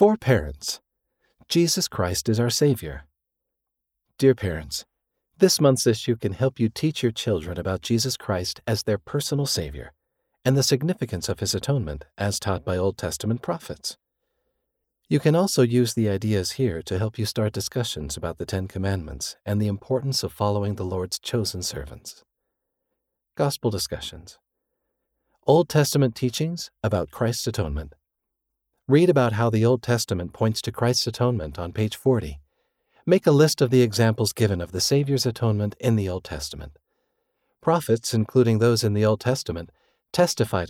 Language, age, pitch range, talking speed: English, 40-59, 95-135 Hz, 155 wpm